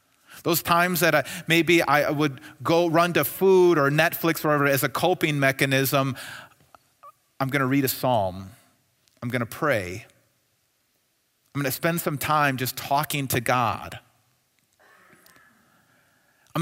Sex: male